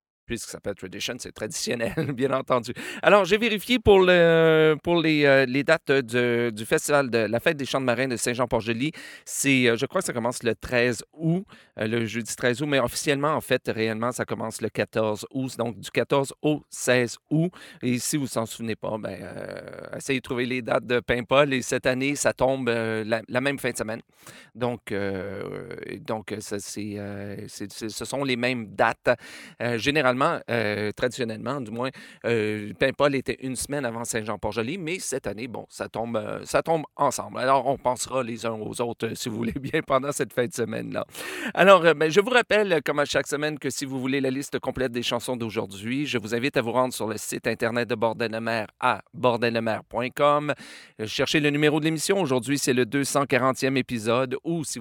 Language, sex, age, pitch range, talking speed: French, male, 40-59, 115-140 Hz, 210 wpm